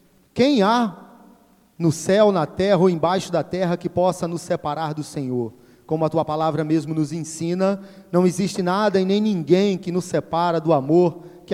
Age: 30-49